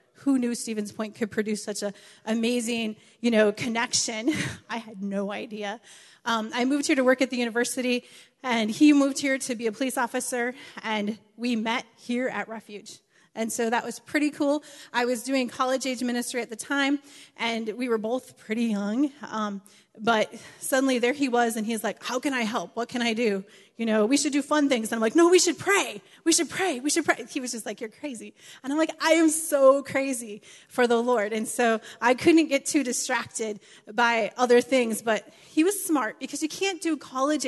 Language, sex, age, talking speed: English, female, 30-49, 215 wpm